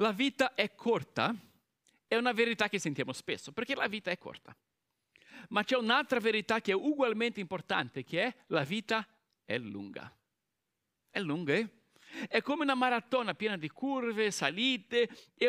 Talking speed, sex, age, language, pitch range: 160 wpm, male, 50-69, Italian, 180-240 Hz